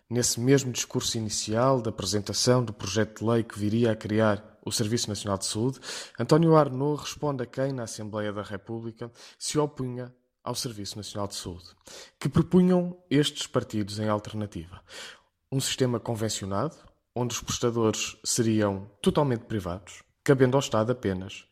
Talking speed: 150 wpm